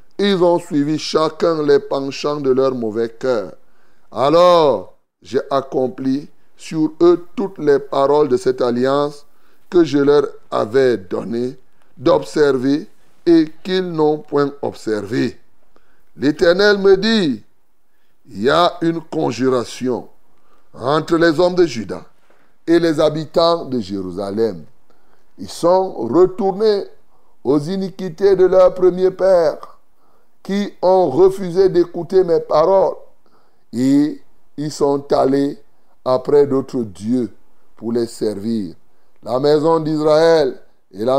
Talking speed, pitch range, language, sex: 120 wpm, 135-175 Hz, French, male